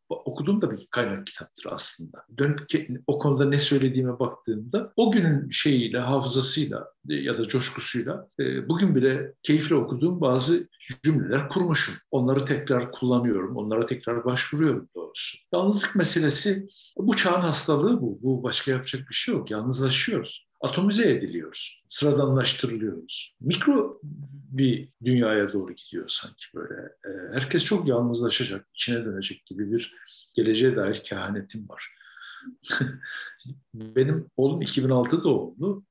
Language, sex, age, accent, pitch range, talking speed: Turkish, male, 60-79, native, 130-180 Hz, 120 wpm